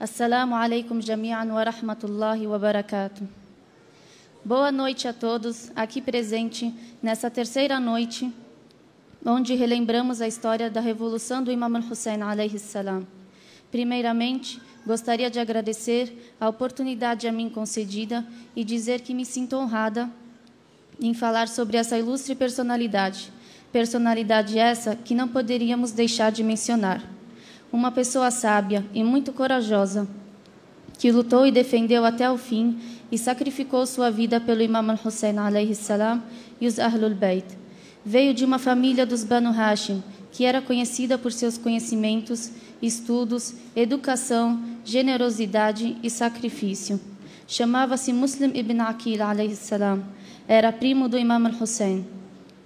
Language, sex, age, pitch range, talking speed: Portuguese, female, 20-39, 220-245 Hz, 125 wpm